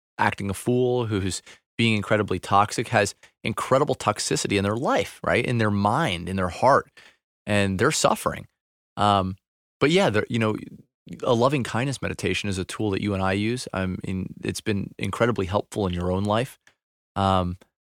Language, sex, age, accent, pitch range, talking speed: English, male, 30-49, American, 95-115 Hz, 165 wpm